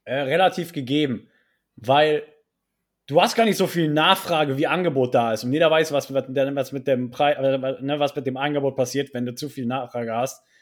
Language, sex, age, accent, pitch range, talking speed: German, male, 20-39, German, 130-160 Hz, 170 wpm